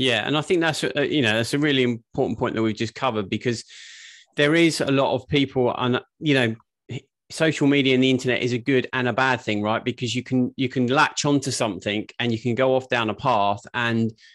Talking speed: 235 wpm